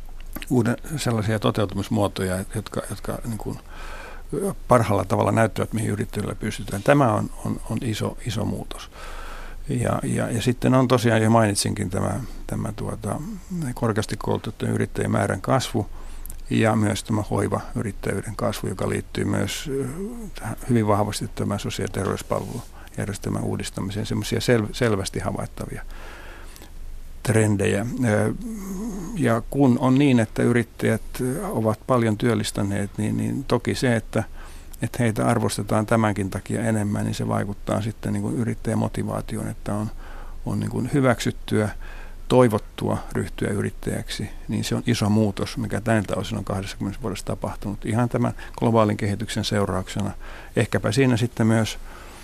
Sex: male